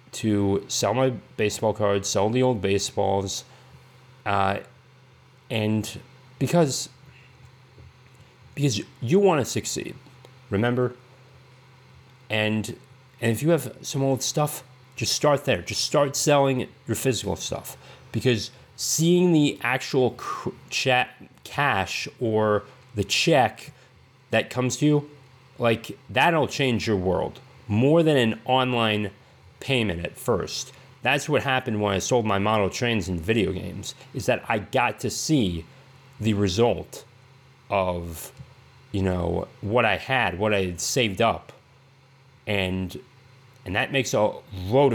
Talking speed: 130 wpm